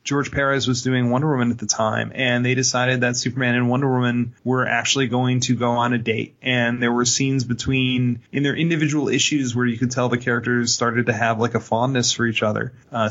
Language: English